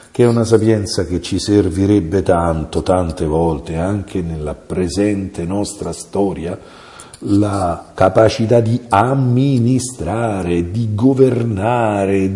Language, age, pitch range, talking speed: Italian, 50-69, 95-135 Hz, 100 wpm